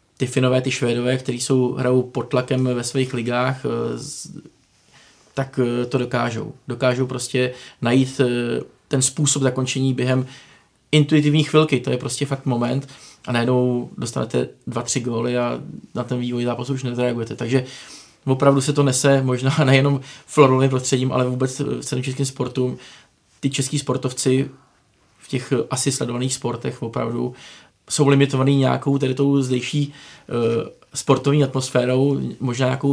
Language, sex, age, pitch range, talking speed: Czech, male, 20-39, 120-135 Hz, 135 wpm